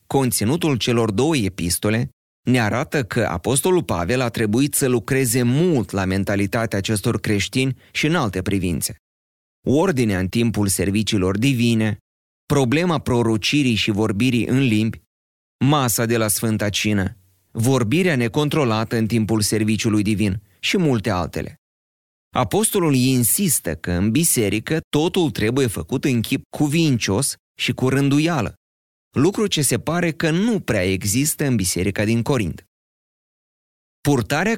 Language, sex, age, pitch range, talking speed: Romanian, male, 30-49, 100-140 Hz, 130 wpm